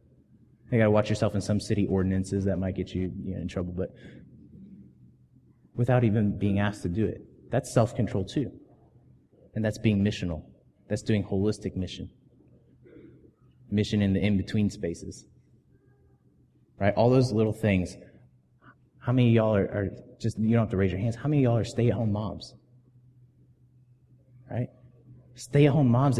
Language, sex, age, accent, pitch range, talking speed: English, male, 30-49, American, 100-125 Hz, 160 wpm